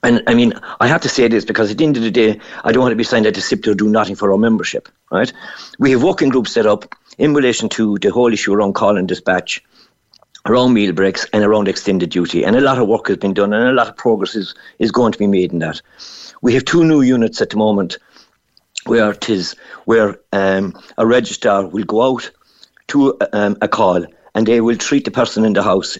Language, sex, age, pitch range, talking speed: English, male, 60-79, 105-130 Hz, 240 wpm